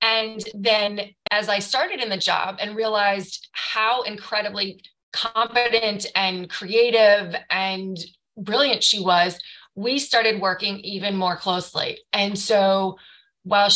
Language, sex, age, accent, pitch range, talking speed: English, female, 30-49, American, 190-215 Hz, 120 wpm